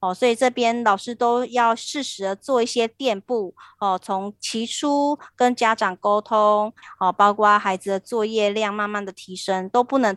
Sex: female